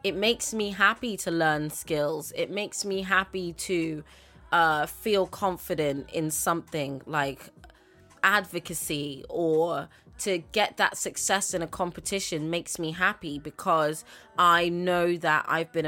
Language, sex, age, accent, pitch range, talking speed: English, female, 20-39, British, 160-210 Hz, 135 wpm